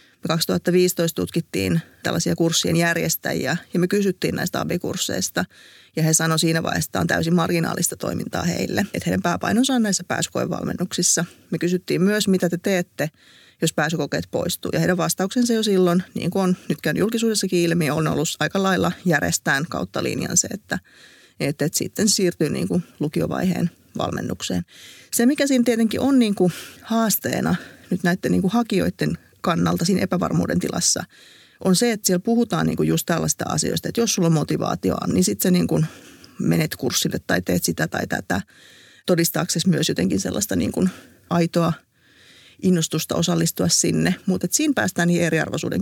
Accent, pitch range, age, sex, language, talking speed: native, 160-190 Hz, 30-49, female, Finnish, 155 wpm